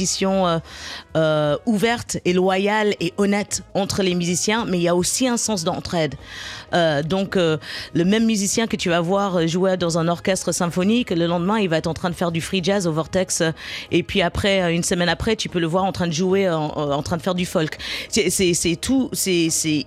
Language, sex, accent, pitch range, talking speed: French, female, French, 170-205 Hz, 225 wpm